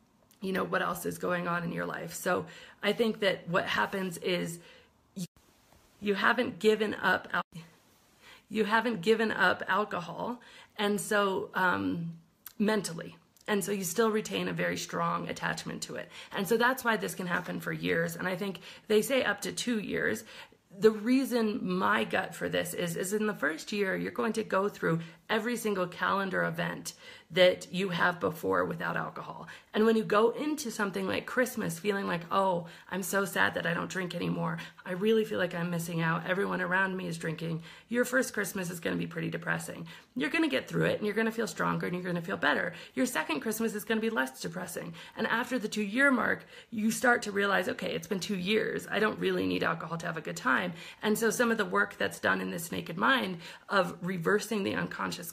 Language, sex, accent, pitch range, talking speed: English, female, American, 175-225 Hz, 205 wpm